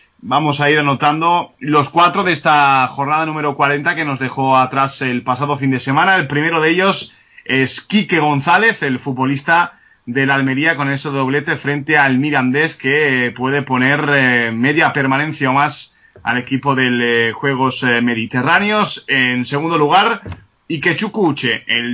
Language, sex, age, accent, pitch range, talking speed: Spanish, male, 30-49, Spanish, 130-165 Hz, 150 wpm